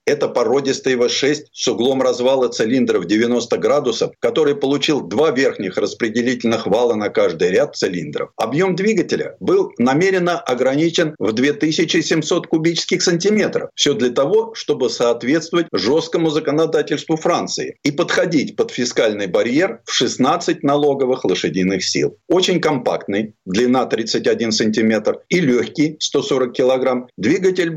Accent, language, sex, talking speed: native, Russian, male, 125 wpm